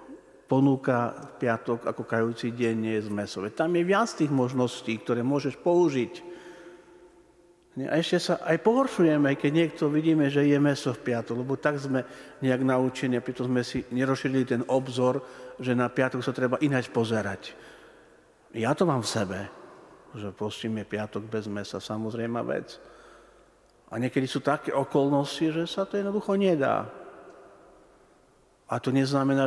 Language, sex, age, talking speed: Slovak, male, 50-69, 145 wpm